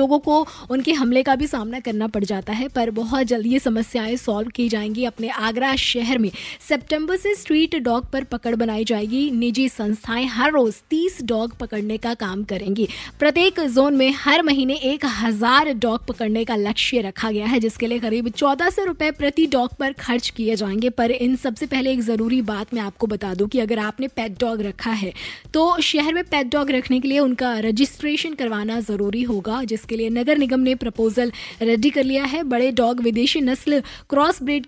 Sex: female